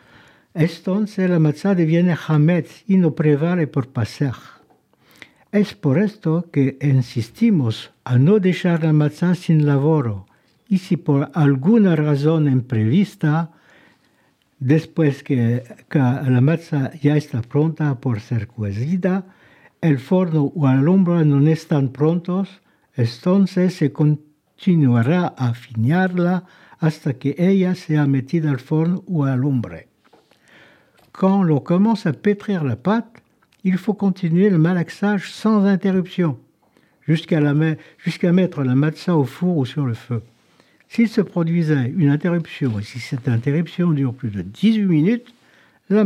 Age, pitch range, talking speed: 60-79, 140-185 Hz, 130 wpm